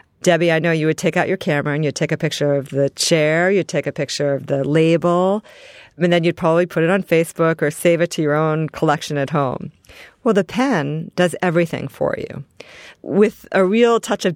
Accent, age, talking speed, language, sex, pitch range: American, 40-59, 220 wpm, English, female, 150-180 Hz